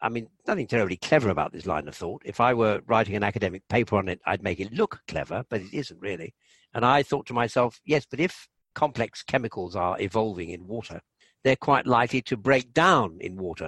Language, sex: English, male